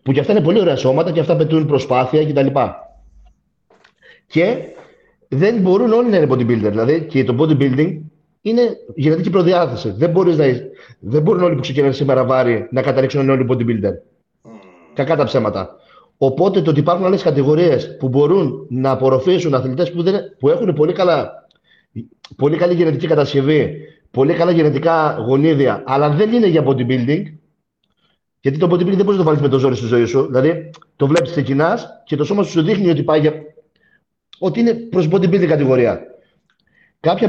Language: Greek